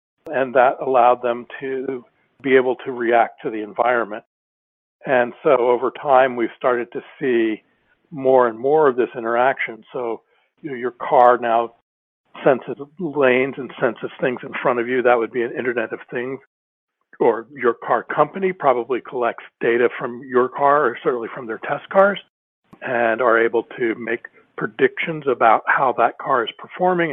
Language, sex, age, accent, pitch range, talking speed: English, male, 60-79, American, 125-175 Hz, 165 wpm